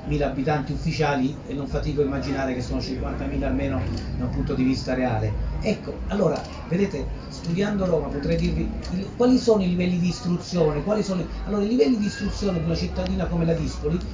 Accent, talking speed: native, 185 wpm